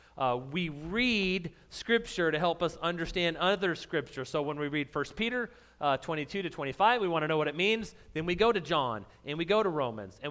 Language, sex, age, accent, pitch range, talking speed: English, male, 30-49, American, 145-200 Hz, 220 wpm